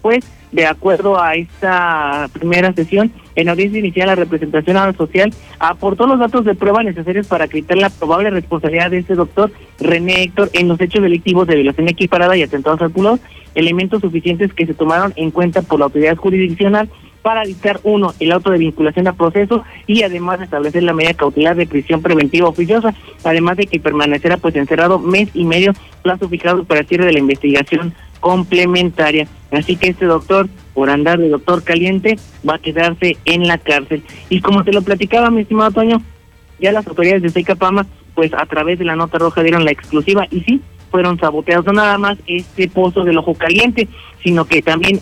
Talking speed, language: 190 wpm, Spanish